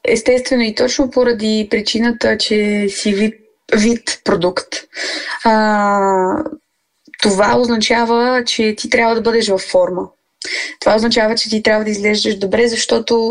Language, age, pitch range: Bulgarian, 20-39, 210-250 Hz